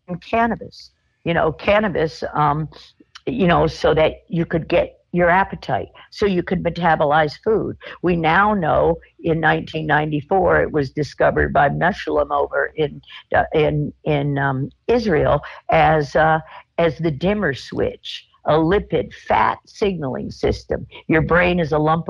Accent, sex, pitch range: American, female, 155-205 Hz